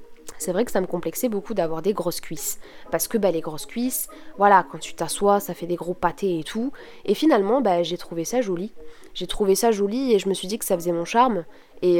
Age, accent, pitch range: 20-39, French, 180-245 Hz